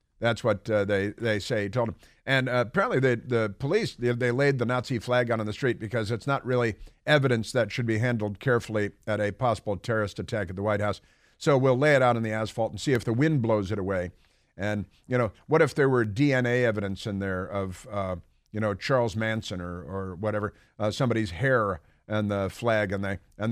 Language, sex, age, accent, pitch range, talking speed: English, male, 50-69, American, 105-130 Hz, 230 wpm